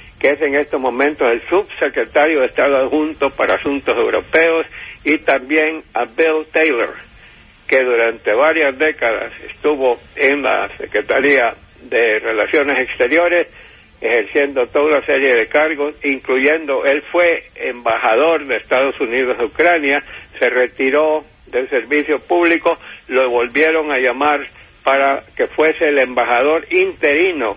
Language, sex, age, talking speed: English, male, 60-79, 130 wpm